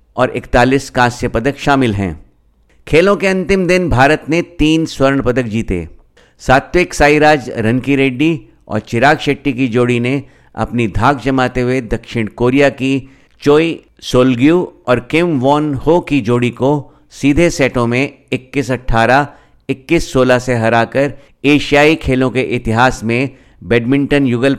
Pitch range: 120-145 Hz